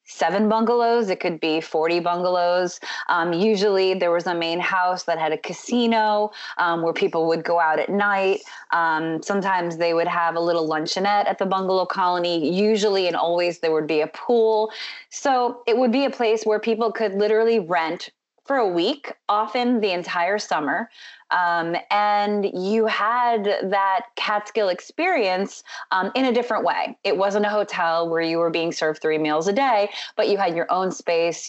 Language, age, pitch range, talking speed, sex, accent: English, 20-39, 165-215 Hz, 180 wpm, female, American